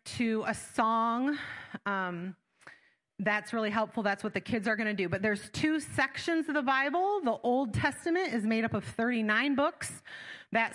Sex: female